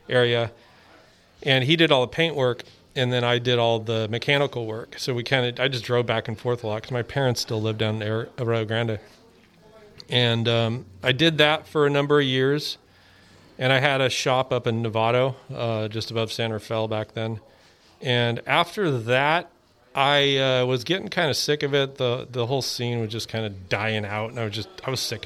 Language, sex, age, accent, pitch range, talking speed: English, male, 40-59, American, 115-135 Hz, 215 wpm